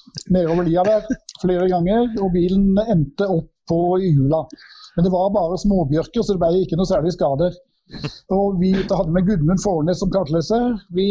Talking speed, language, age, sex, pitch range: 155 wpm, English, 60-79, male, 175-205 Hz